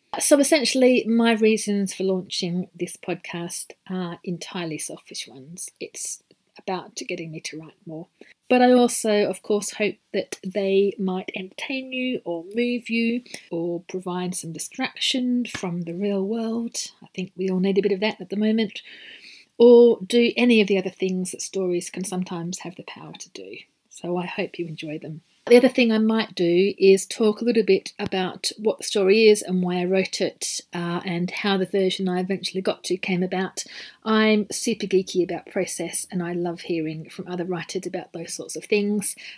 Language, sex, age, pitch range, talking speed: English, female, 40-59, 180-215 Hz, 190 wpm